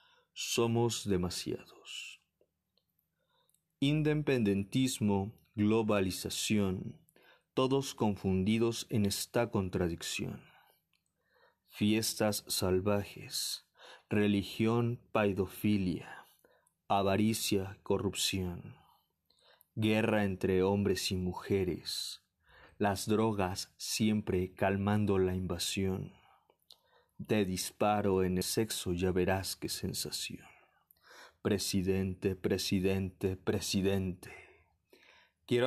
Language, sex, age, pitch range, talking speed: Spanish, male, 40-59, 95-110 Hz, 65 wpm